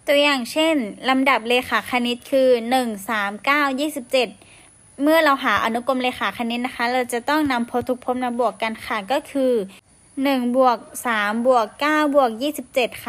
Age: 10-29